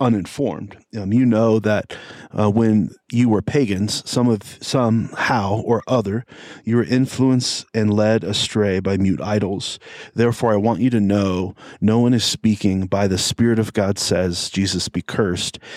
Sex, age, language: male, 40-59, English